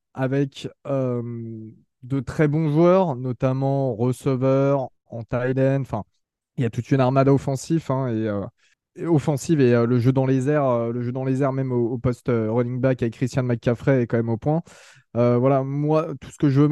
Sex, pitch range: male, 125-150 Hz